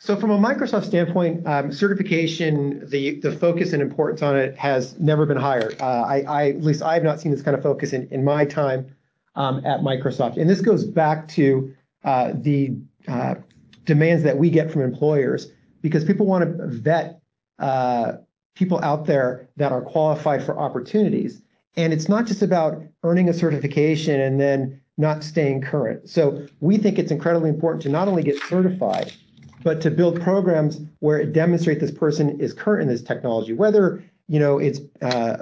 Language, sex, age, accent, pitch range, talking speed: English, male, 40-59, American, 140-170 Hz, 180 wpm